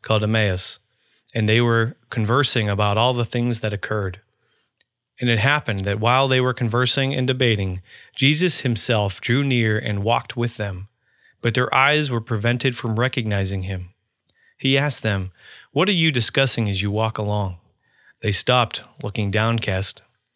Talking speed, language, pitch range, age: 155 wpm, English, 105-130 Hz, 30-49